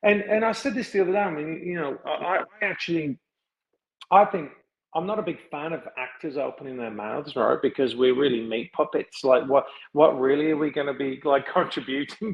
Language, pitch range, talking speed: English, 135-185 Hz, 215 wpm